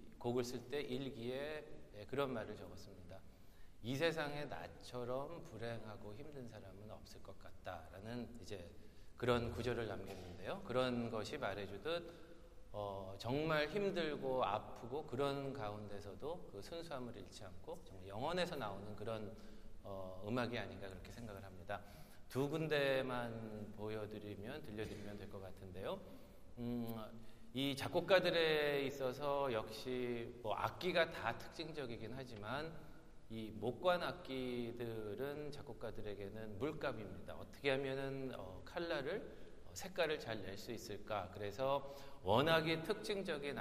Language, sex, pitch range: Korean, male, 105-140 Hz